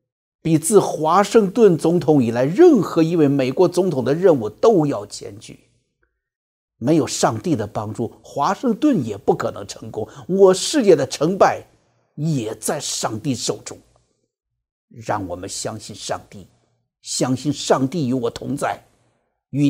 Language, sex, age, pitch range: Chinese, male, 50-69, 110-160 Hz